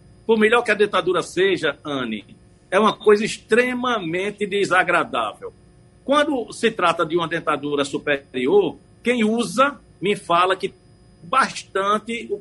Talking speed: 130 wpm